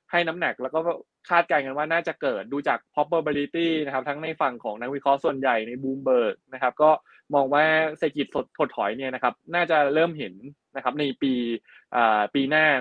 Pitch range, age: 130-155 Hz, 20-39